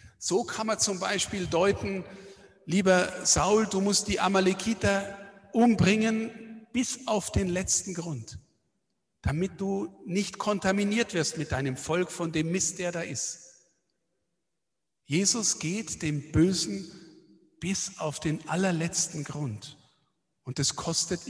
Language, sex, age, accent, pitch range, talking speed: German, male, 50-69, German, 145-195 Hz, 125 wpm